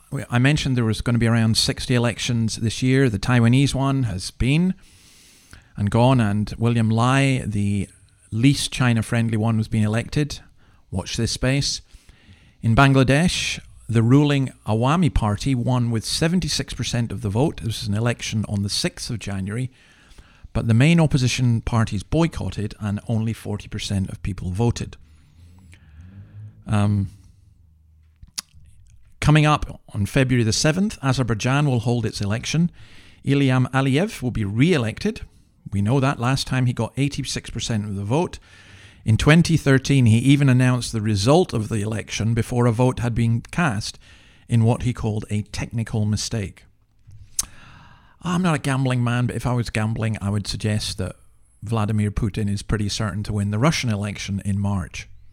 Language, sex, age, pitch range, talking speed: English, male, 40-59, 105-130 Hz, 155 wpm